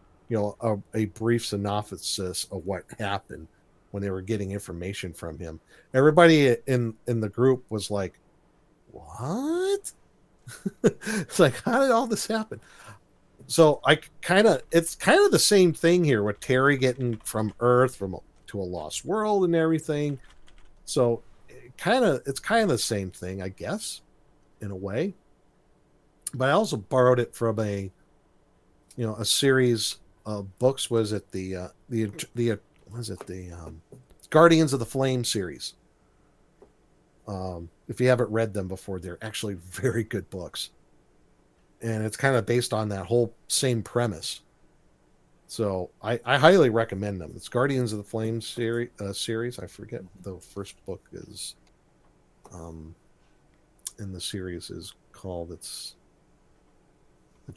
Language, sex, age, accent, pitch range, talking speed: English, male, 50-69, American, 95-130 Hz, 155 wpm